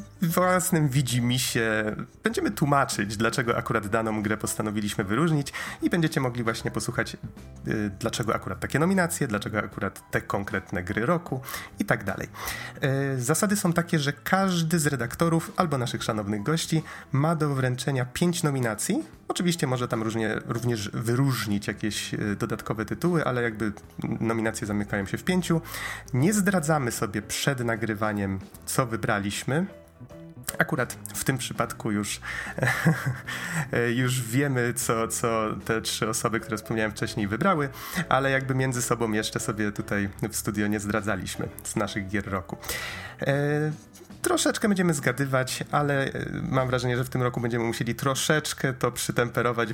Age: 30-49